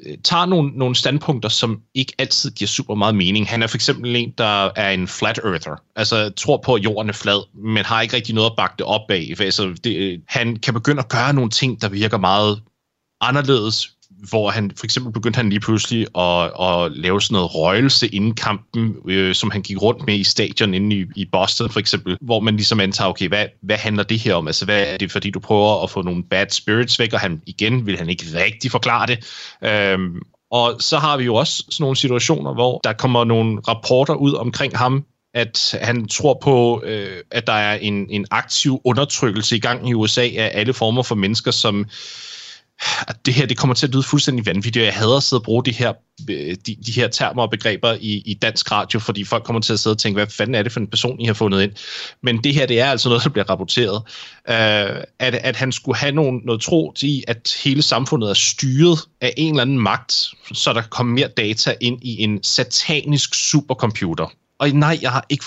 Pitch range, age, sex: 105-130 Hz, 30-49, male